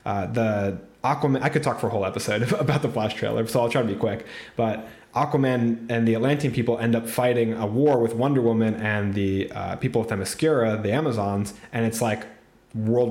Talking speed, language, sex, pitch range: 210 wpm, English, male, 110-130 Hz